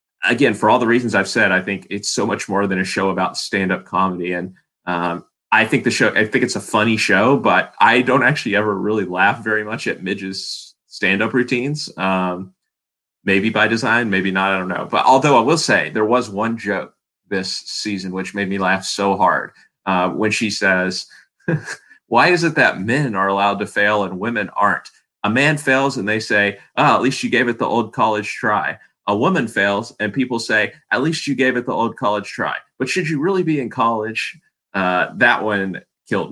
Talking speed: 215 wpm